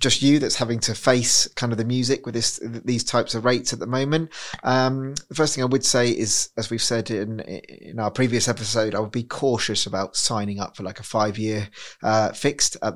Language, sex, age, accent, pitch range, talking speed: English, male, 20-39, British, 110-130 Hz, 230 wpm